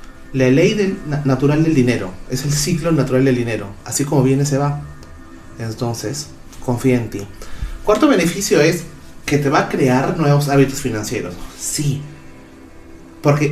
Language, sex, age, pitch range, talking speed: Spanish, male, 30-49, 120-150 Hz, 150 wpm